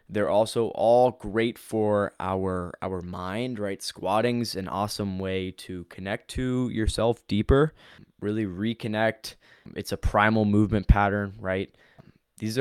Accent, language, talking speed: American, English, 130 wpm